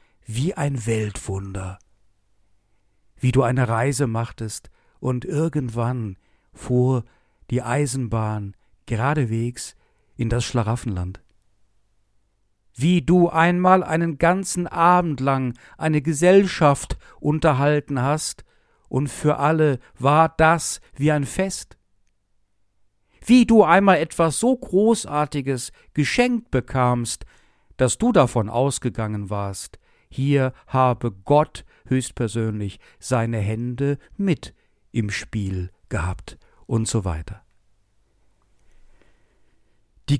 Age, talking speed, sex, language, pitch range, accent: 60-79, 95 wpm, male, German, 105-150 Hz, German